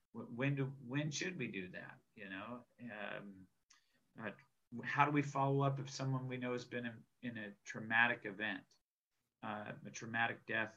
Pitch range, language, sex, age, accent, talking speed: 105-130 Hz, English, male, 40-59, American, 175 wpm